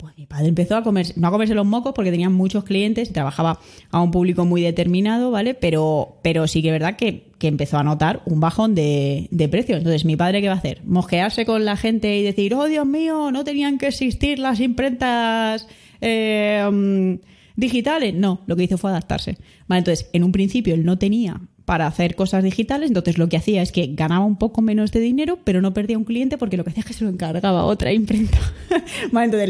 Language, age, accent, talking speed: Spanish, 20-39, Spanish, 225 wpm